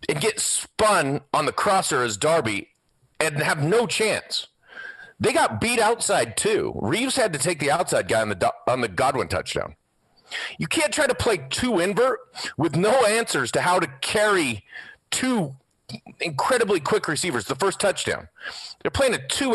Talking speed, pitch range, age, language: 170 wpm, 180-290 Hz, 40-59, English